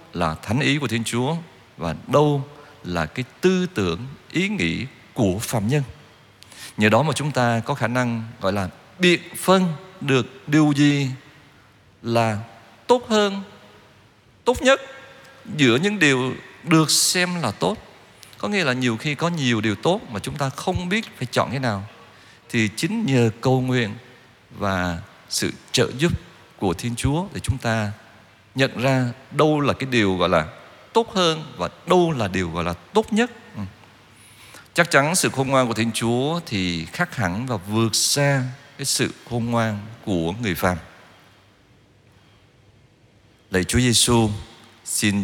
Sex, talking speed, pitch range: male, 160 wpm, 105-140 Hz